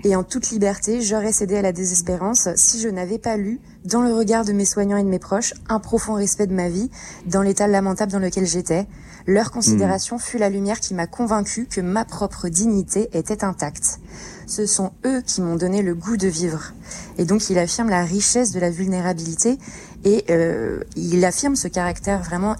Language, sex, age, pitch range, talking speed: French, female, 20-39, 180-210 Hz, 200 wpm